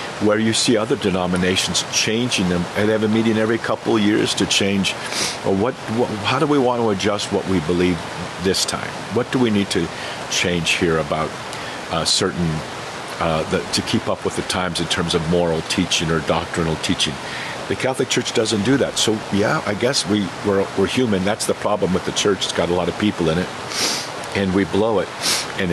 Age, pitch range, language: 50-69, 90-105 Hz, English